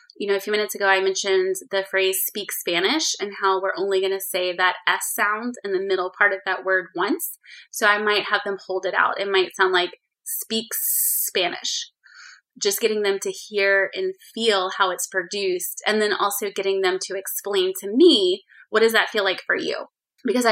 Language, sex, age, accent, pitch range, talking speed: English, female, 20-39, American, 190-225 Hz, 210 wpm